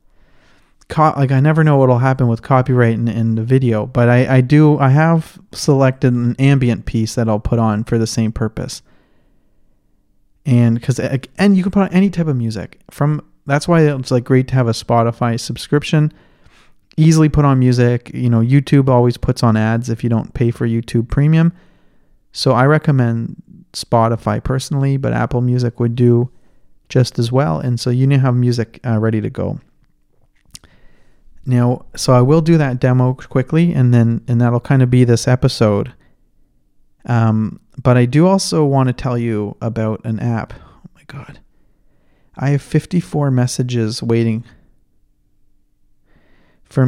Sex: male